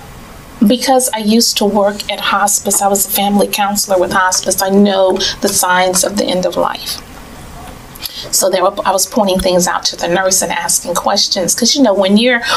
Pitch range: 180-205 Hz